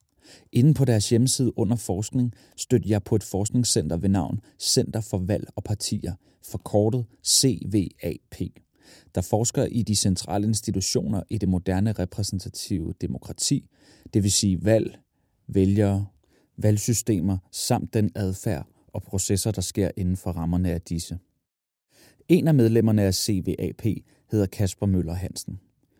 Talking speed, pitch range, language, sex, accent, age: 135 wpm, 95-115 Hz, Danish, male, native, 30-49